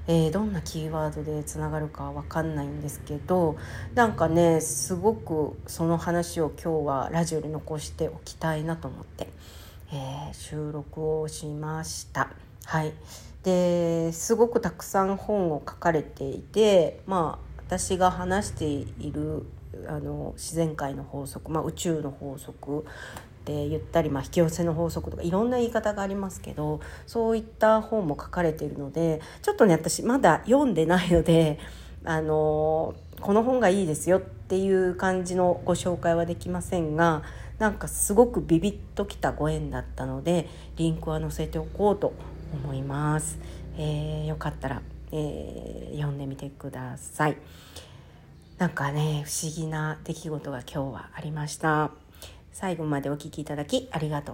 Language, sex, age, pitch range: Japanese, female, 40-59, 145-175 Hz